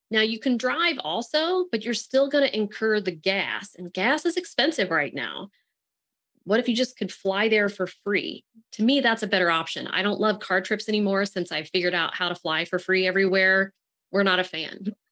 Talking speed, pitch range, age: 210 wpm, 185-275 Hz, 30-49